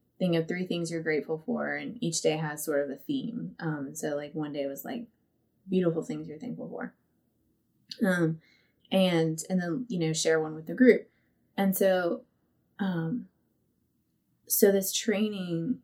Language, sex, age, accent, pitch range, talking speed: English, female, 20-39, American, 155-190 Hz, 165 wpm